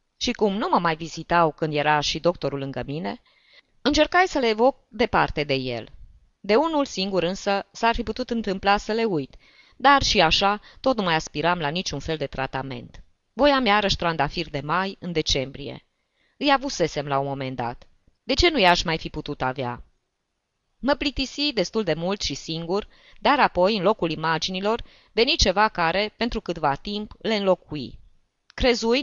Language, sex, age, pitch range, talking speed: Romanian, female, 20-39, 145-210 Hz, 175 wpm